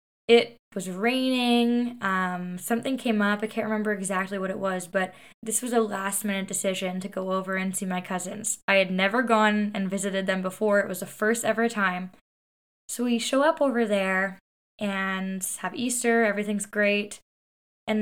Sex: female